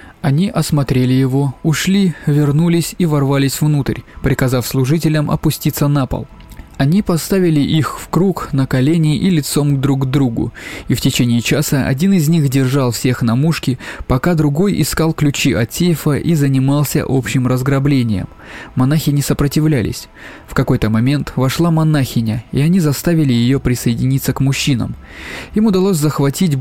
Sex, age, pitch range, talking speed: male, 20-39, 130-165 Hz, 145 wpm